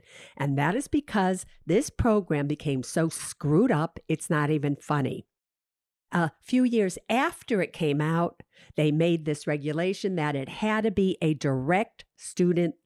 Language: English